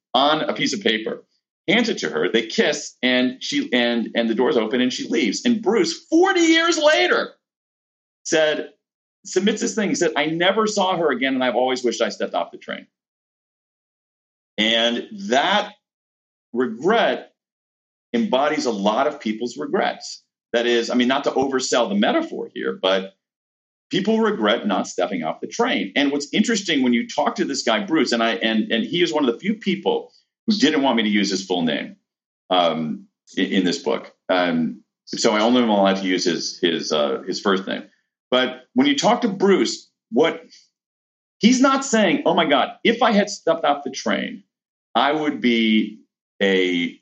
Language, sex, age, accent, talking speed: English, male, 40-59, American, 180 wpm